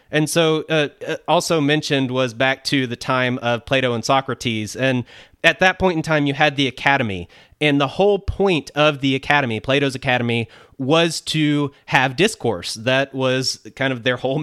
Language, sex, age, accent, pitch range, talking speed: English, male, 30-49, American, 125-150 Hz, 180 wpm